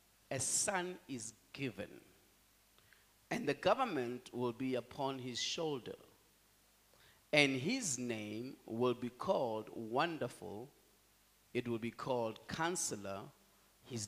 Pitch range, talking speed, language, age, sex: 110-145 Hz, 105 wpm, English, 50-69, male